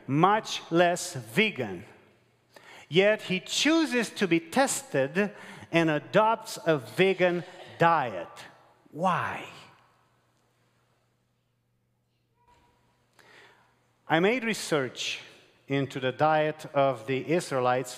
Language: English